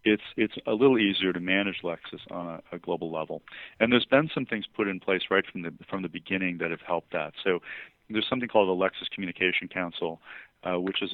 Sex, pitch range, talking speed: male, 90-100 Hz, 225 wpm